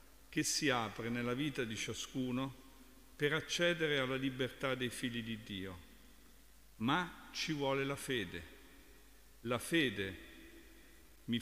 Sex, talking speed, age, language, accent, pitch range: male, 120 wpm, 50-69, Italian, native, 115-145 Hz